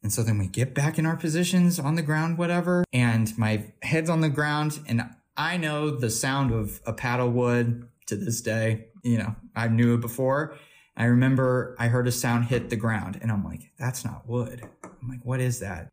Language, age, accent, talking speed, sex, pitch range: English, 20-39, American, 215 wpm, male, 110-130 Hz